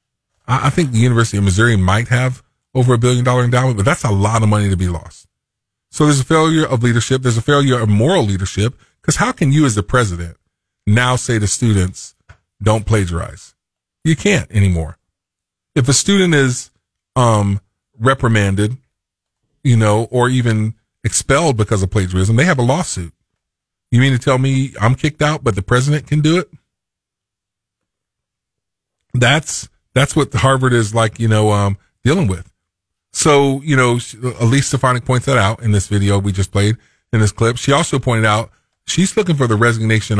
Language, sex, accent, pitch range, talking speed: English, male, American, 95-125 Hz, 180 wpm